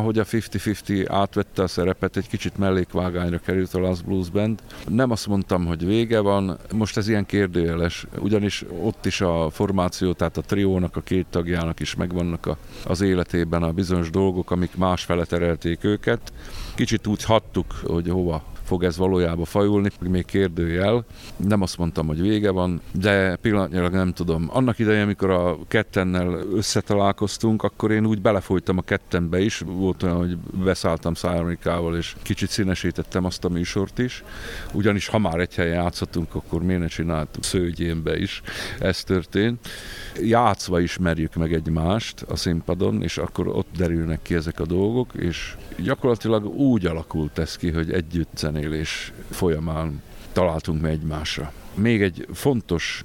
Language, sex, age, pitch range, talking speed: Hungarian, male, 50-69, 85-105 Hz, 150 wpm